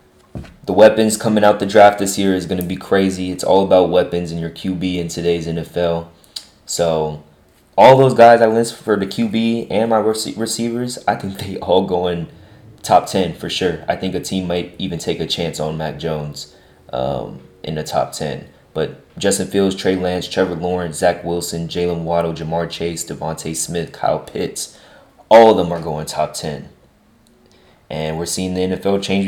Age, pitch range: 20-39, 80-95 Hz